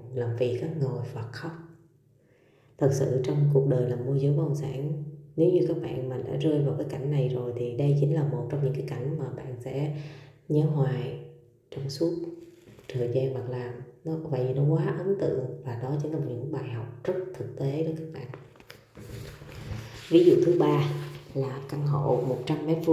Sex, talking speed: female, 195 wpm